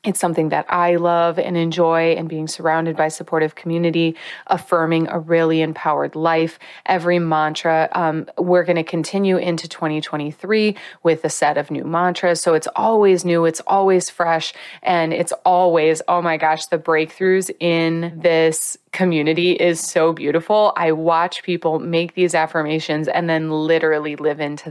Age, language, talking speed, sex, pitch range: 20-39, English, 160 wpm, female, 160-180 Hz